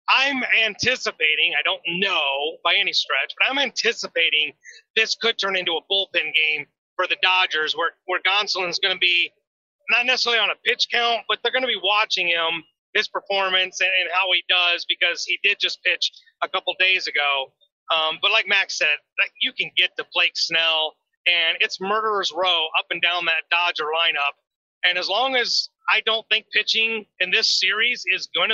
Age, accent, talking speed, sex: 30-49, American, 190 wpm, male